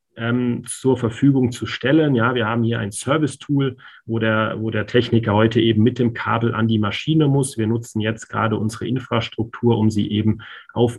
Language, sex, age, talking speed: German, male, 30-49, 185 wpm